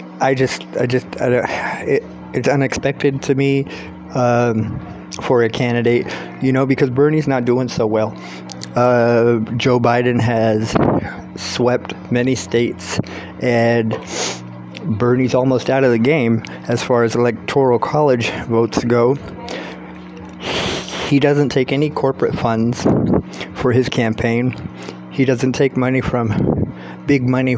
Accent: American